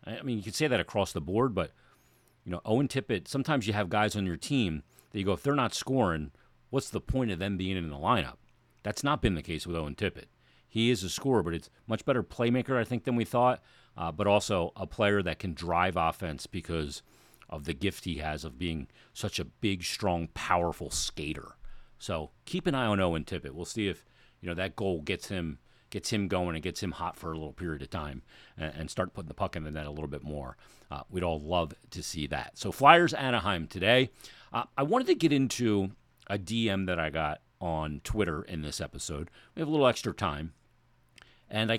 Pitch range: 80-120 Hz